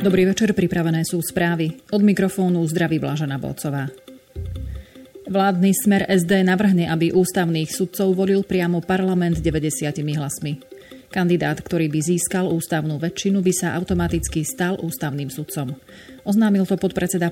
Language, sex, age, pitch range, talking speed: Slovak, female, 30-49, 160-185 Hz, 130 wpm